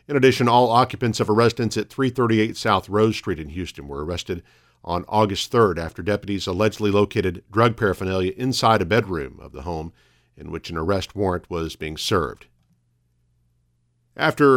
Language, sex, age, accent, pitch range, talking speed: English, male, 50-69, American, 100-130 Hz, 165 wpm